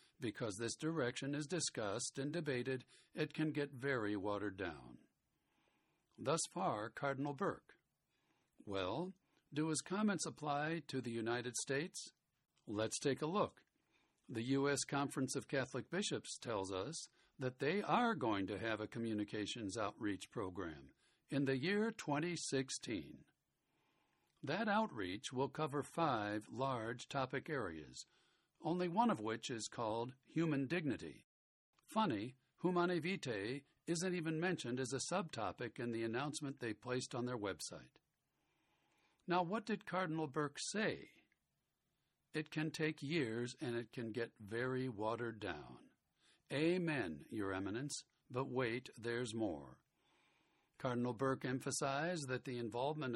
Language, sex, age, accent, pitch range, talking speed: English, male, 60-79, American, 120-155 Hz, 130 wpm